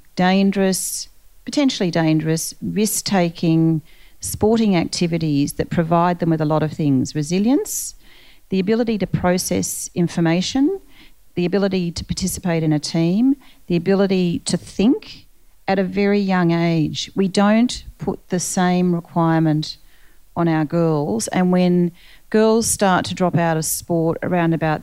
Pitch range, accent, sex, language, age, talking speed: 155-190 Hz, Australian, female, English, 40-59, 135 wpm